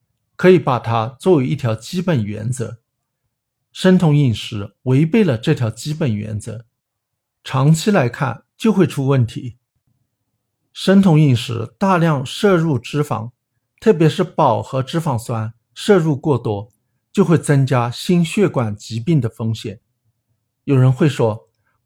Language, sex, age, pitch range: Chinese, male, 50-69, 115-155 Hz